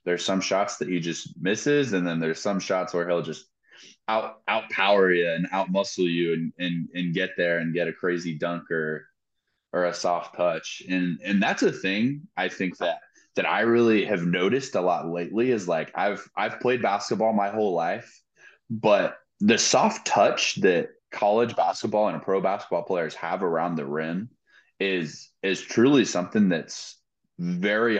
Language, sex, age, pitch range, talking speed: English, male, 20-39, 85-100 Hz, 180 wpm